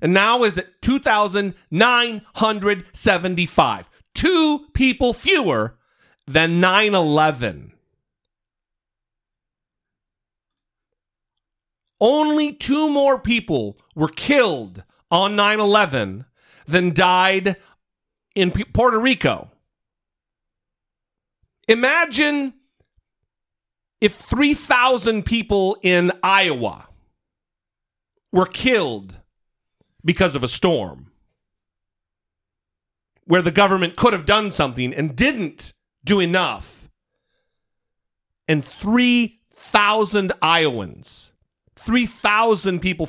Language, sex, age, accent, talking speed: English, male, 40-59, American, 70 wpm